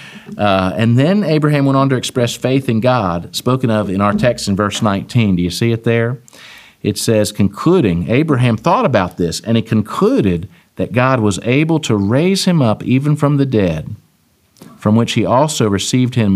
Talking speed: 190 wpm